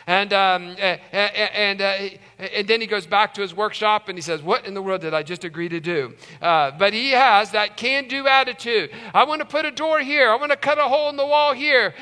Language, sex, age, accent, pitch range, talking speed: English, male, 50-69, American, 195-275 Hz, 250 wpm